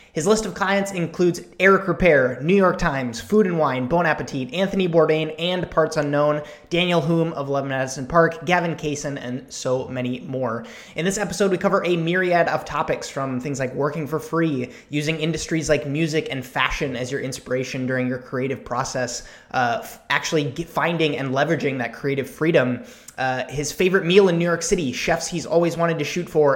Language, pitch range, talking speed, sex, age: English, 130-165 Hz, 185 wpm, male, 20-39